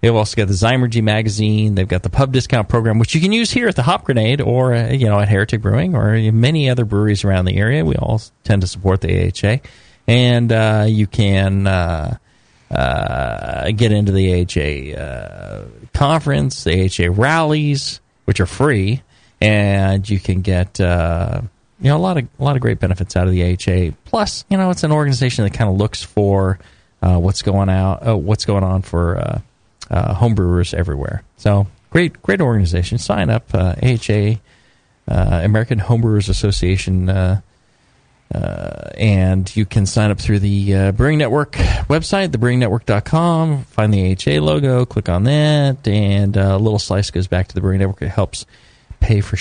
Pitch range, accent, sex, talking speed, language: 95-125 Hz, American, male, 180 wpm, English